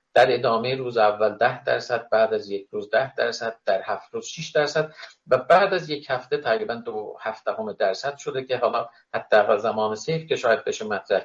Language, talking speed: Persian, 190 wpm